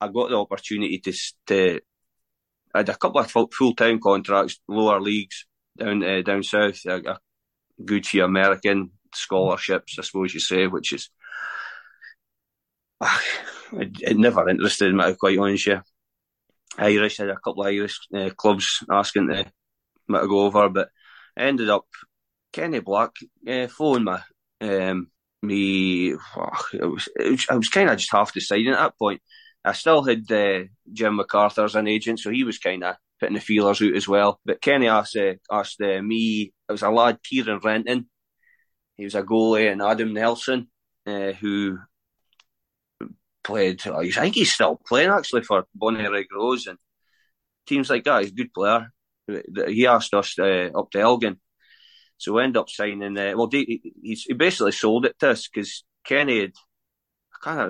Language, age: English, 20-39